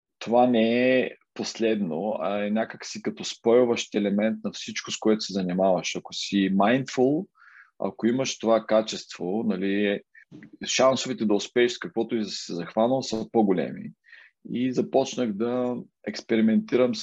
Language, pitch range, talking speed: Bulgarian, 100-120 Hz, 140 wpm